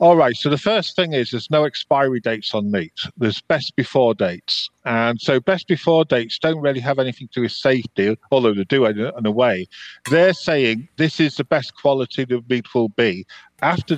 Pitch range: 115-150 Hz